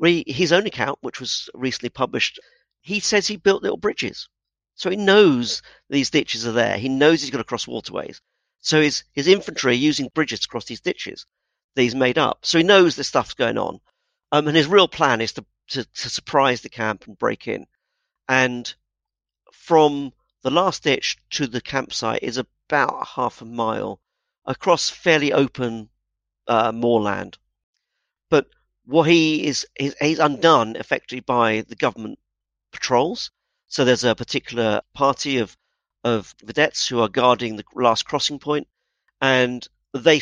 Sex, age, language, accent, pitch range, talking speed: male, 50-69, English, British, 120-160 Hz, 165 wpm